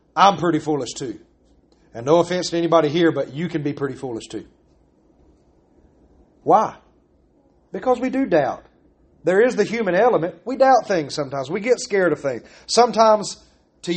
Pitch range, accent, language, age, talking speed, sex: 140-180 Hz, American, English, 30-49, 165 wpm, male